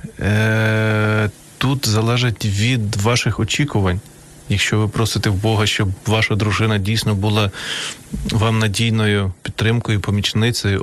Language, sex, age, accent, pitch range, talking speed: Ukrainian, male, 20-39, native, 100-110 Hz, 105 wpm